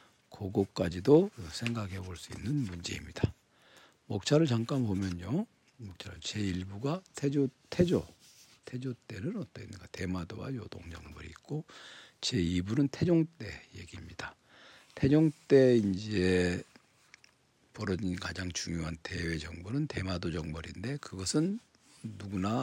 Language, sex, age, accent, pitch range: Korean, male, 50-69, native, 90-130 Hz